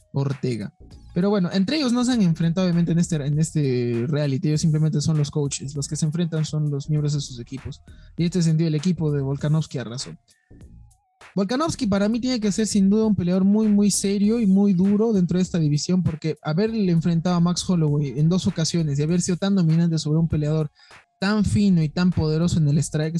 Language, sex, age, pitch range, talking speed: Spanish, male, 20-39, 150-185 Hz, 215 wpm